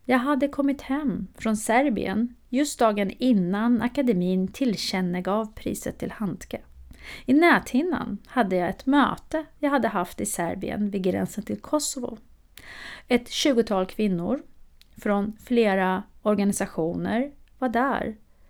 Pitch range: 195-265 Hz